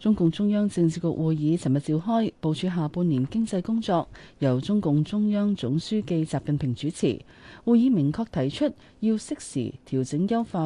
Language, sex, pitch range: Chinese, female, 140-190 Hz